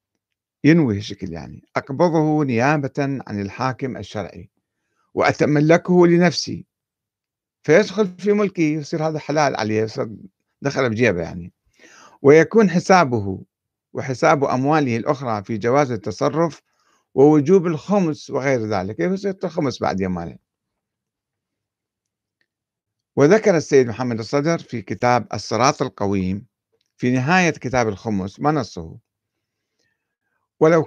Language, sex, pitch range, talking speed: Arabic, male, 110-160 Hz, 100 wpm